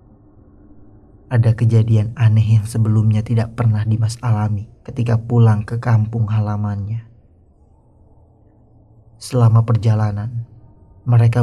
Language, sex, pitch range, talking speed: Indonesian, male, 105-115 Hz, 90 wpm